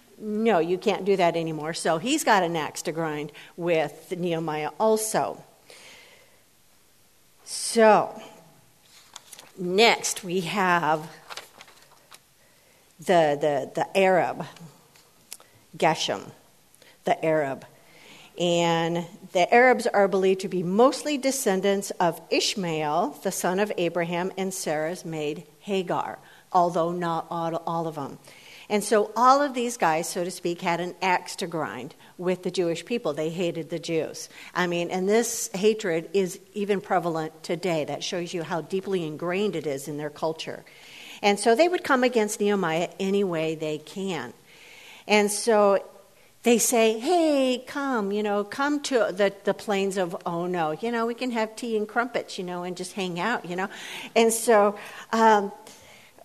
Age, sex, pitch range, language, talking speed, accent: 50-69, female, 170-215 Hz, English, 150 wpm, American